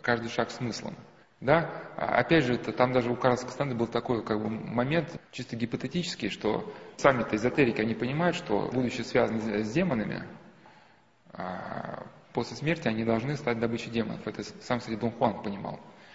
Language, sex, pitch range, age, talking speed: Russian, male, 115-145 Hz, 20-39, 160 wpm